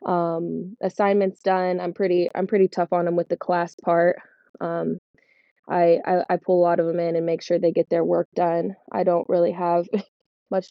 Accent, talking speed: American, 205 wpm